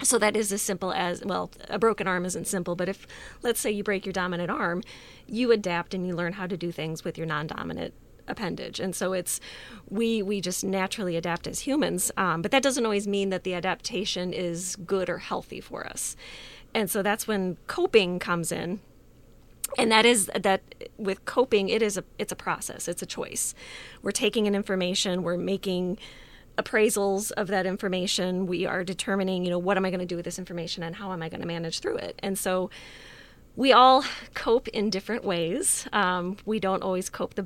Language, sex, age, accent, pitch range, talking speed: English, female, 30-49, American, 180-215 Hz, 205 wpm